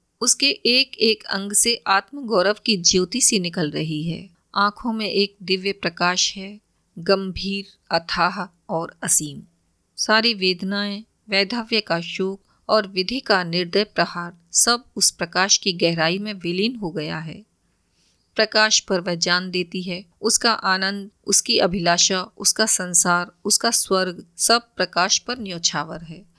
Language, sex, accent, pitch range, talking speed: Hindi, female, native, 175-215 Hz, 140 wpm